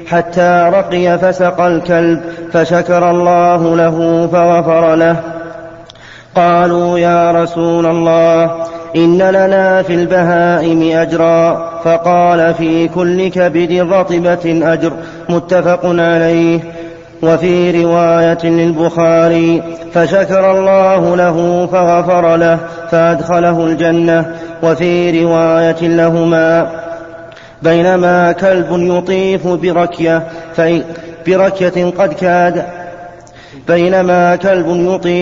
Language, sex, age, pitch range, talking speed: Arabic, male, 30-49, 165-175 Hz, 75 wpm